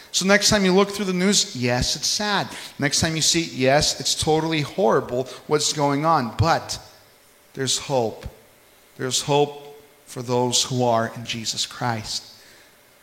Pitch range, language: 125-170 Hz, English